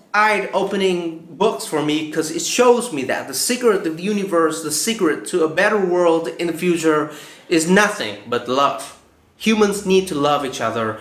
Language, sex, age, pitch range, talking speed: Vietnamese, male, 30-49, 130-190 Hz, 180 wpm